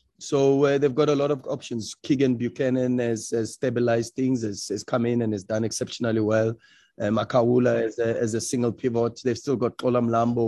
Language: English